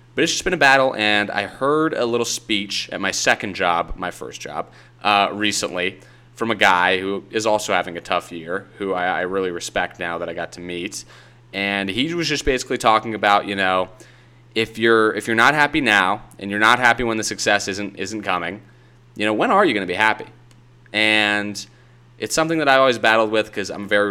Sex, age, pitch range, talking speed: male, 30-49, 100-120 Hz, 220 wpm